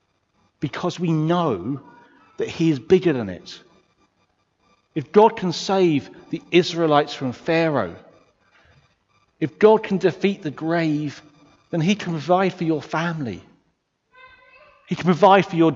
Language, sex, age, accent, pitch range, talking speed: English, male, 40-59, British, 140-180 Hz, 135 wpm